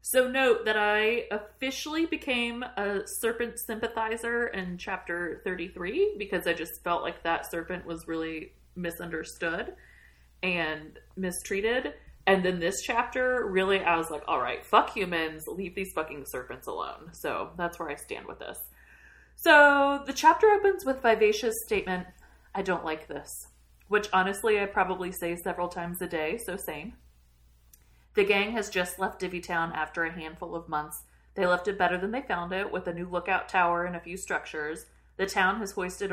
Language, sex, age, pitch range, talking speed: English, female, 30-49, 165-215 Hz, 170 wpm